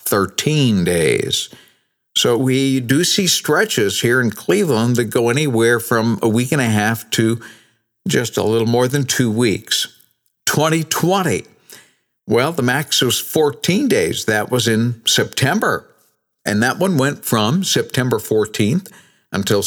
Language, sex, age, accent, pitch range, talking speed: English, male, 50-69, American, 115-145 Hz, 140 wpm